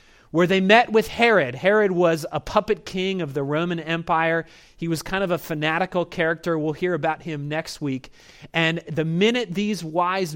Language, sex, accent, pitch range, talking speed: English, male, American, 150-195 Hz, 185 wpm